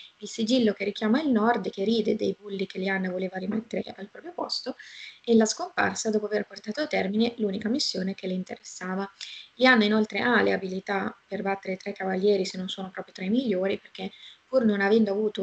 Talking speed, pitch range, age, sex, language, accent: 200 wpm, 195-225 Hz, 20-39, female, Italian, native